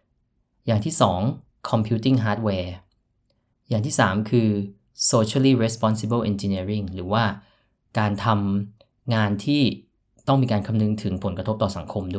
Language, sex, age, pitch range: Thai, male, 20-39, 100-120 Hz